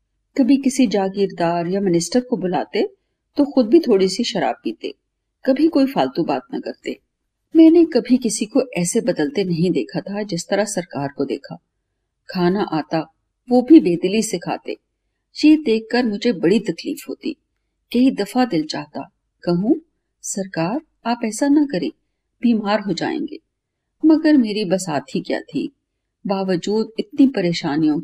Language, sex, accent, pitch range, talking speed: Hindi, female, native, 185-285 Hz, 140 wpm